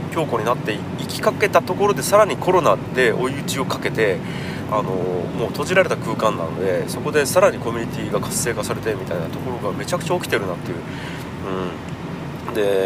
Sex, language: male, Japanese